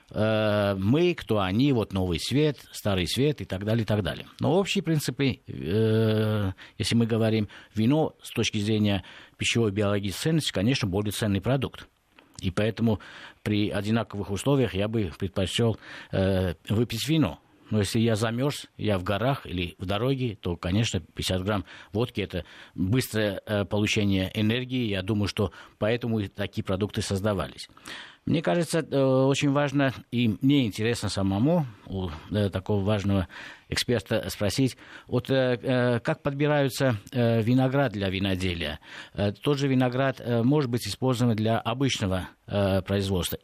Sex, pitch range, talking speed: male, 100-130 Hz, 135 wpm